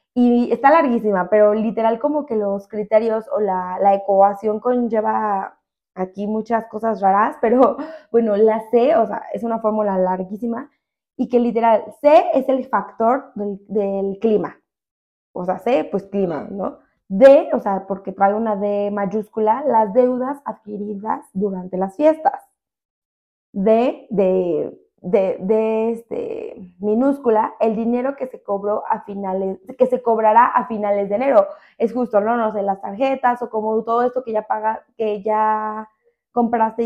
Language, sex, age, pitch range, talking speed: Spanish, female, 20-39, 205-255 Hz, 155 wpm